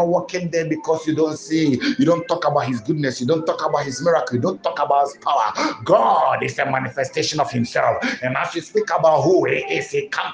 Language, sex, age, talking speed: English, male, 60-79, 230 wpm